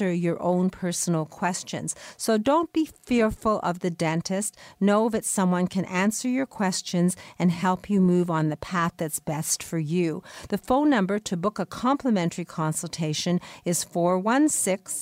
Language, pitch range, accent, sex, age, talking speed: English, 170-215 Hz, American, female, 50-69, 150 wpm